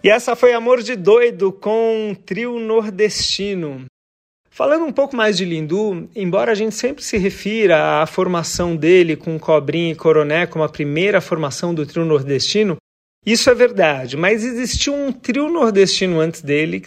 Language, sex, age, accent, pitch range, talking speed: Portuguese, male, 40-59, Brazilian, 160-210 Hz, 165 wpm